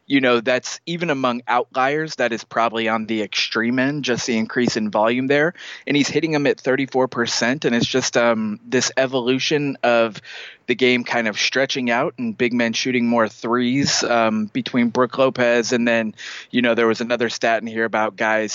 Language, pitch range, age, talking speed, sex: English, 115-130 Hz, 20-39, 195 wpm, male